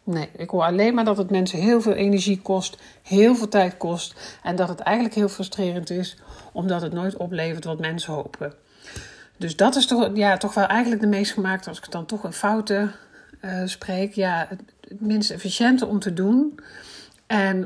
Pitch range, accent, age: 165-200 Hz, Dutch, 50-69